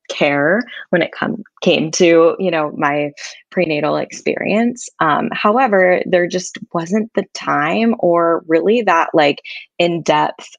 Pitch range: 155-215 Hz